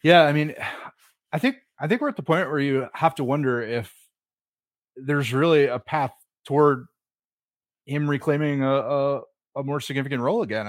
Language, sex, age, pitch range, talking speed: English, male, 30-49, 125-160 Hz, 175 wpm